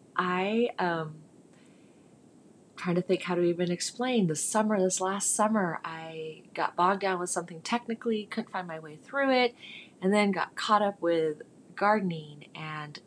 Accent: American